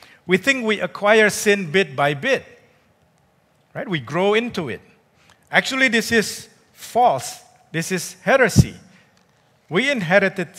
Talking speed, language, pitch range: 125 wpm, English, 130-185 Hz